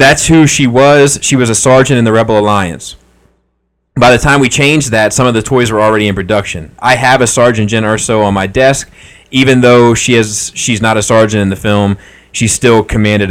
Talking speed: 220 wpm